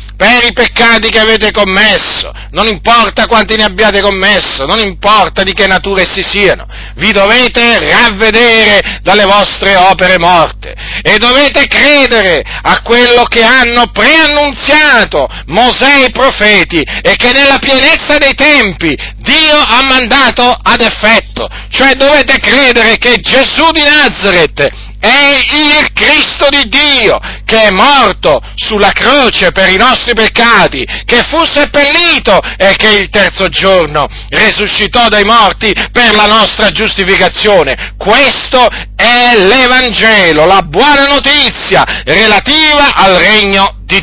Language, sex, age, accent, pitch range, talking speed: Italian, male, 50-69, native, 200-260 Hz, 130 wpm